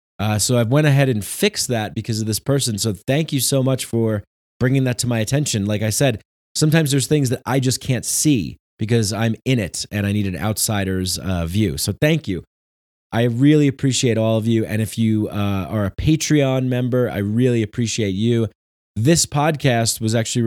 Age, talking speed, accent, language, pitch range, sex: 20-39, 205 wpm, American, English, 105-135 Hz, male